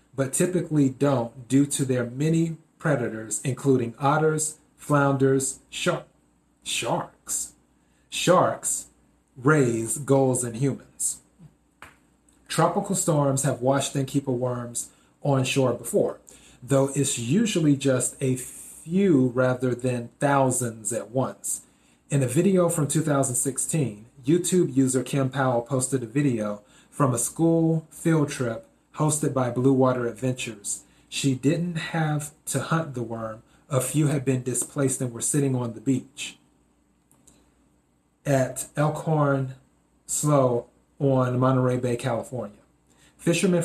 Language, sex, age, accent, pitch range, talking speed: English, male, 30-49, American, 125-150 Hz, 120 wpm